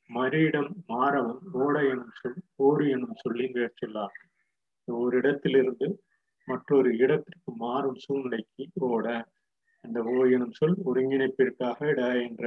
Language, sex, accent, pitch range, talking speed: Tamil, male, native, 125-150 Hz, 115 wpm